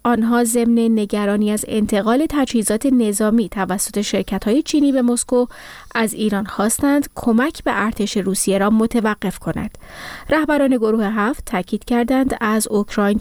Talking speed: 130 wpm